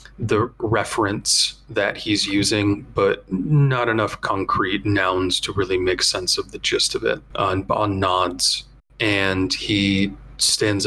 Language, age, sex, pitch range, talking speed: English, 30-49, male, 95-120 Hz, 140 wpm